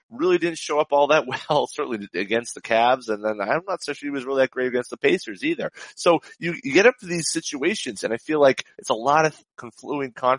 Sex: male